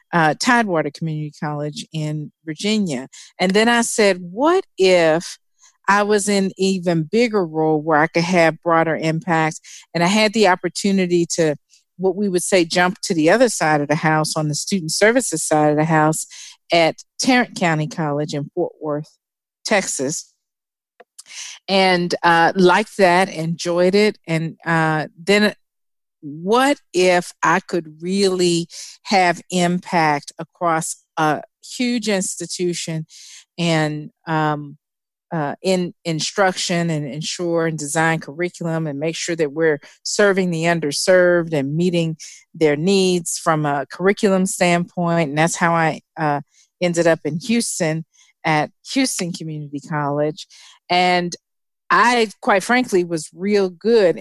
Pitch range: 155-190 Hz